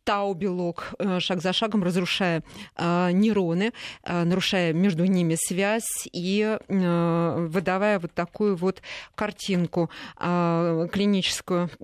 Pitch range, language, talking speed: 180-215 Hz, Russian, 90 wpm